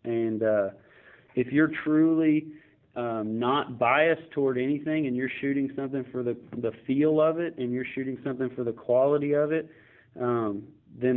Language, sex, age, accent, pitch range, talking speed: English, male, 30-49, American, 120-135 Hz, 165 wpm